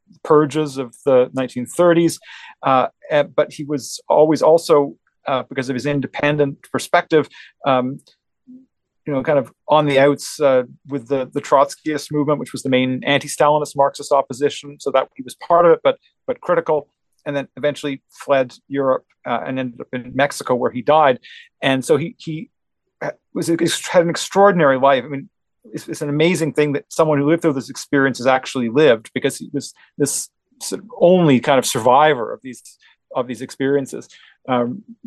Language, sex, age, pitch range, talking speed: English, male, 40-59, 130-160 Hz, 180 wpm